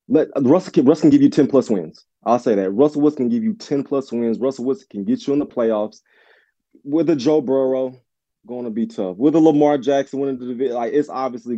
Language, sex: English, male